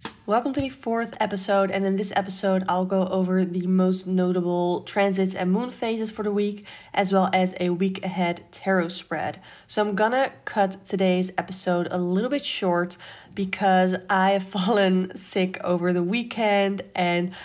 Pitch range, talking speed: 175-200 Hz, 170 wpm